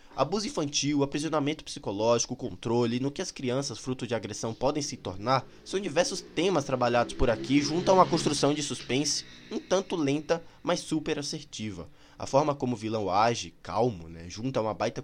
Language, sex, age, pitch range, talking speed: Portuguese, male, 20-39, 110-145 Hz, 180 wpm